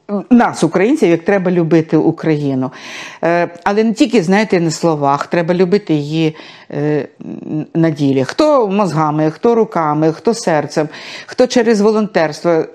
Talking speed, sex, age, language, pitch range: 120 wpm, female, 50-69, Ukrainian, 165-220 Hz